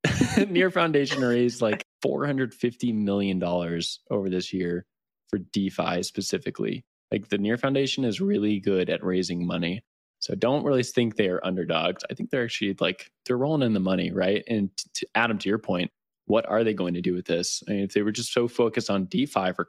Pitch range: 95-115 Hz